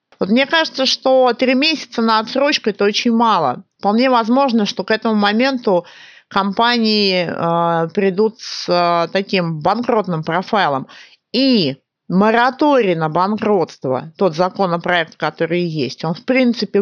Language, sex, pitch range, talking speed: Russian, female, 175-230 Hz, 130 wpm